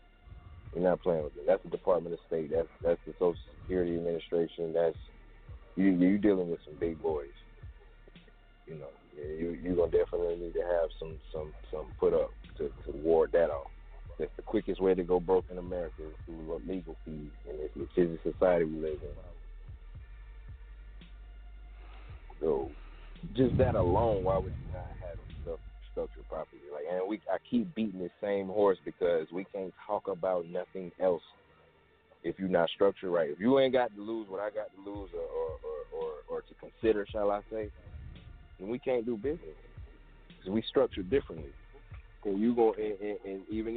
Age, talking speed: 30-49, 180 wpm